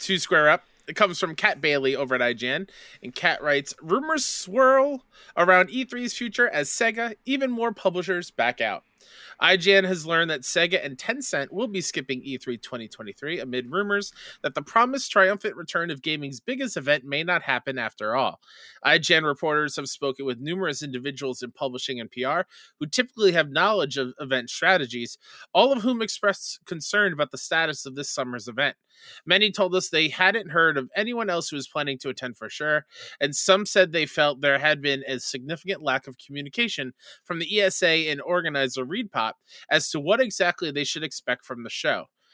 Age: 20-39